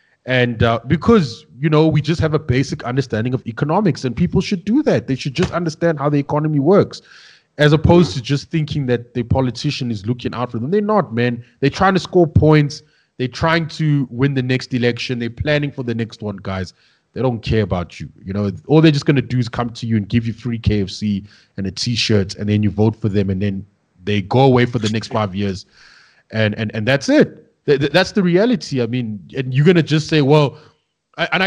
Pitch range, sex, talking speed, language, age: 120-175 Hz, male, 225 wpm, English, 20-39